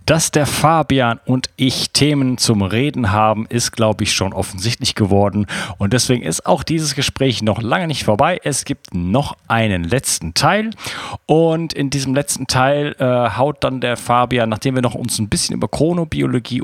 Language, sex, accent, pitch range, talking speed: German, male, German, 105-140 Hz, 175 wpm